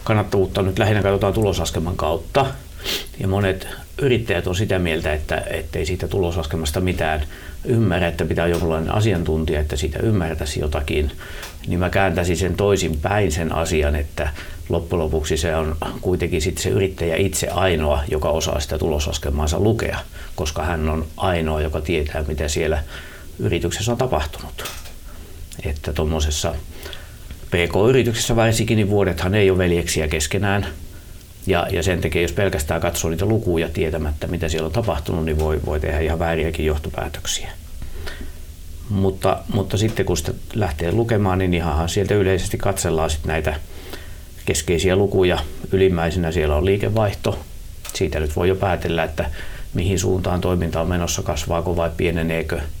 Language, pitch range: Finnish, 80-95 Hz